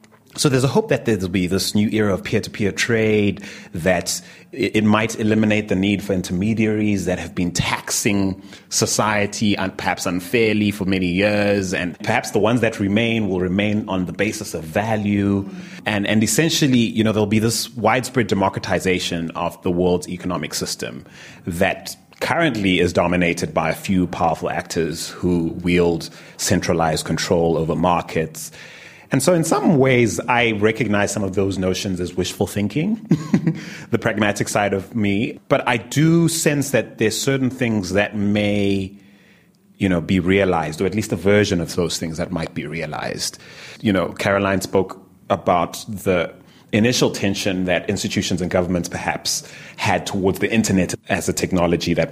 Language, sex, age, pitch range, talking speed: English, male, 30-49, 90-110 Hz, 165 wpm